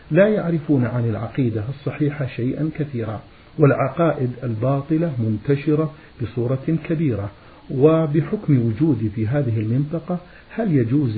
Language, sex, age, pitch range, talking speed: Arabic, male, 50-69, 120-155 Hz, 100 wpm